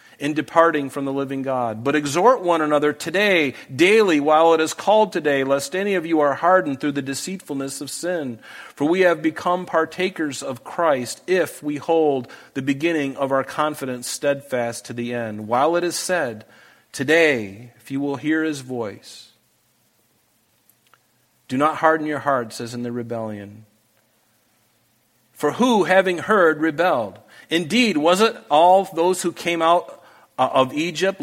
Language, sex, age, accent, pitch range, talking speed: English, male, 40-59, American, 130-180 Hz, 160 wpm